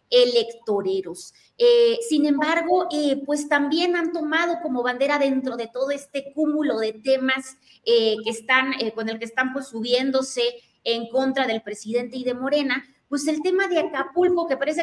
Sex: female